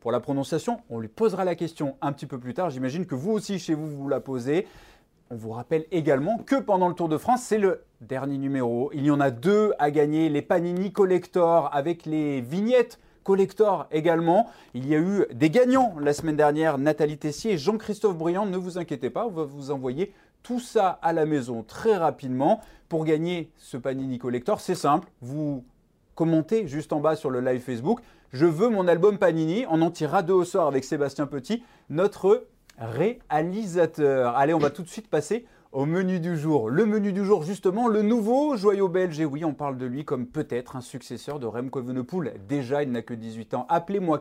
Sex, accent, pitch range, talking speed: male, French, 140-195 Hz, 205 wpm